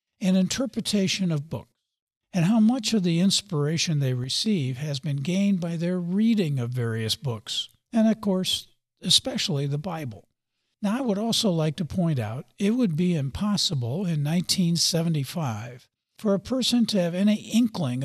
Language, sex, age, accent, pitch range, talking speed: English, male, 60-79, American, 140-200 Hz, 160 wpm